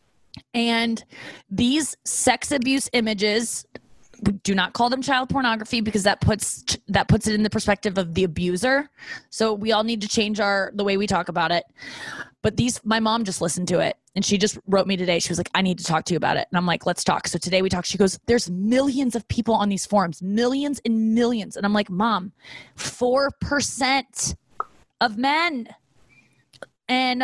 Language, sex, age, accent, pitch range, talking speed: English, female, 20-39, American, 195-235 Hz, 200 wpm